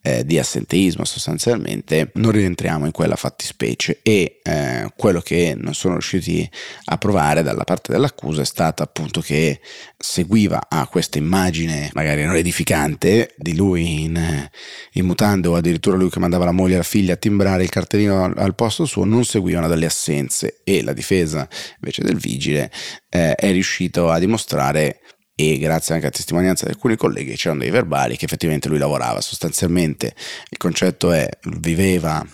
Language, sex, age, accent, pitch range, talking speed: Italian, male, 30-49, native, 80-95 Hz, 165 wpm